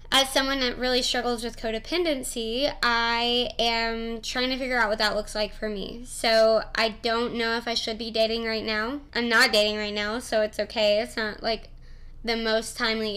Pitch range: 215-240 Hz